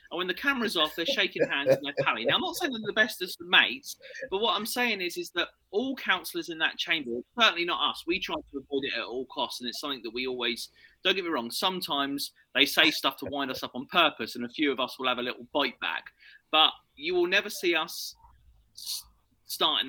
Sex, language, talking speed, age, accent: male, English, 245 wpm, 30-49, British